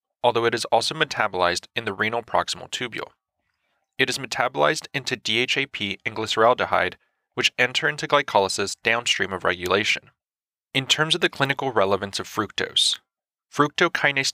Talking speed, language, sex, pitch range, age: 140 wpm, English, male, 105-140 Hz, 30-49